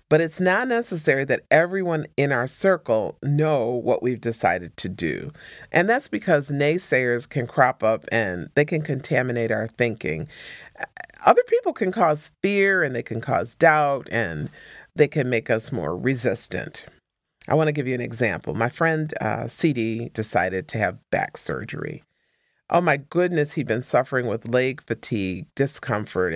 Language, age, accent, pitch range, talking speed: English, 40-59, American, 115-155 Hz, 160 wpm